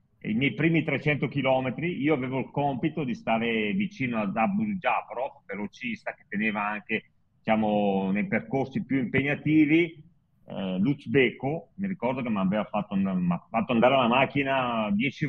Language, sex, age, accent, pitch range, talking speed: Italian, male, 40-59, native, 125-175 Hz, 145 wpm